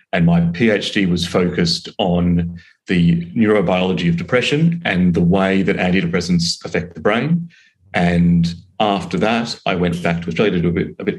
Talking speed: 165 wpm